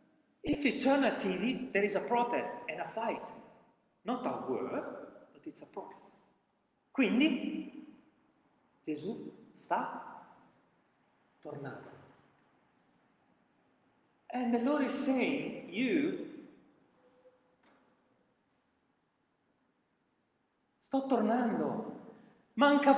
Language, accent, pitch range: Italian, native, 195-270 Hz